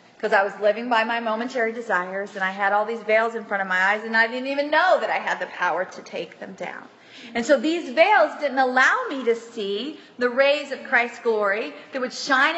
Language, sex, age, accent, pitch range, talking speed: English, female, 30-49, American, 230-295 Hz, 240 wpm